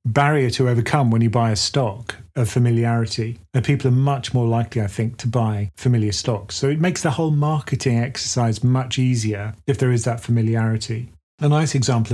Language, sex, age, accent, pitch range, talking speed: English, male, 30-49, British, 115-135 Hz, 195 wpm